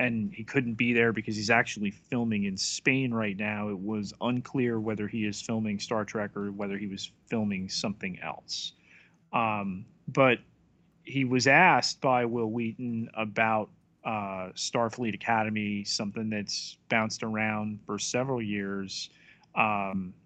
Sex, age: male, 30-49